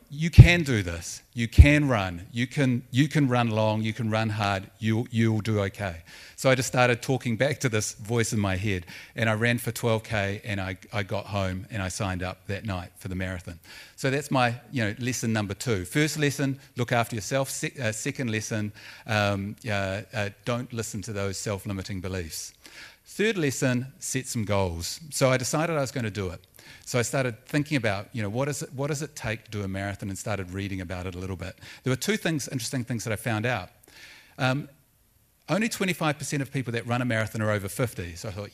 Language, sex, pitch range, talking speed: English, male, 100-130 Hz, 220 wpm